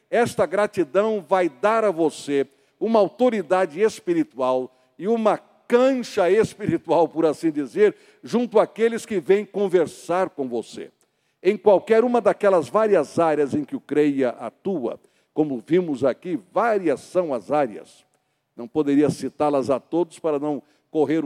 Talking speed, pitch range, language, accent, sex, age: 140 wpm, 150-210 Hz, Portuguese, Brazilian, male, 60-79